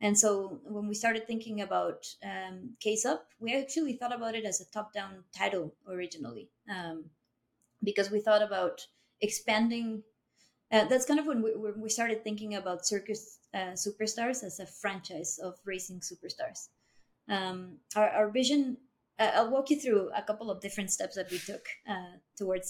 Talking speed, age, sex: 170 wpm, 30-49, female